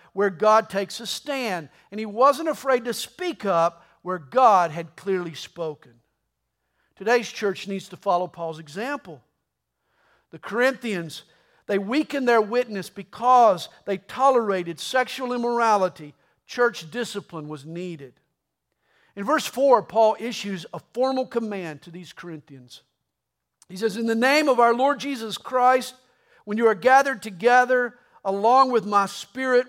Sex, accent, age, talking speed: male, American, 50-69, 140 wpm